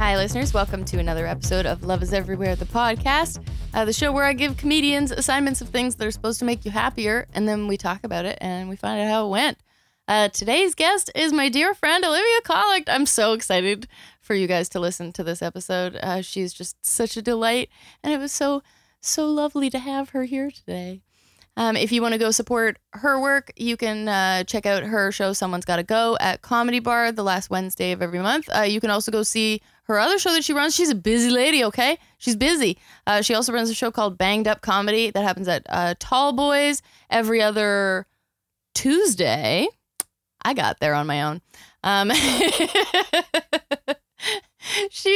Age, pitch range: 20-39, 190-280 Hz